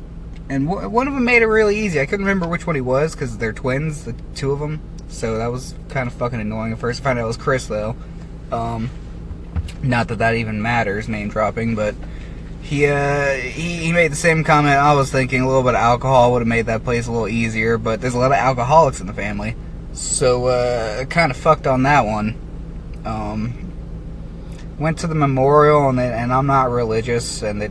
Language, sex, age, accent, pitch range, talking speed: English, male, 20-39, American, 110-150 Hz, 215 wpm